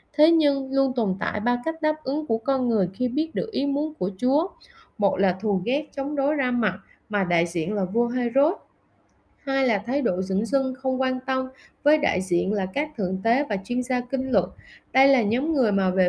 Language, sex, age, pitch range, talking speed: Vietnamese, female, 20-39, 205-275 Hz, 225 wpm